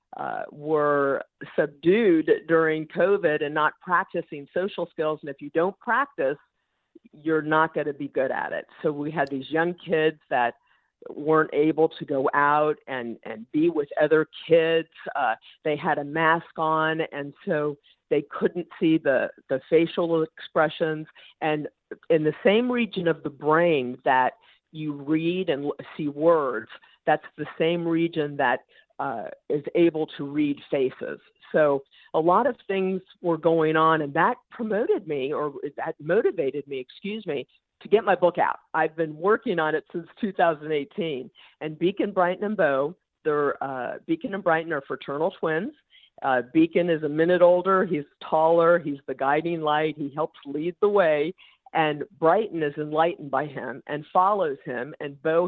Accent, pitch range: American, 150-185 Hz